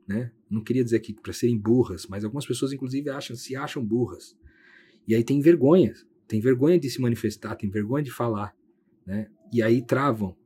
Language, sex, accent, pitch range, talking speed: Portuguese, male, Brazilian, 110-135 Hz, 190 wpm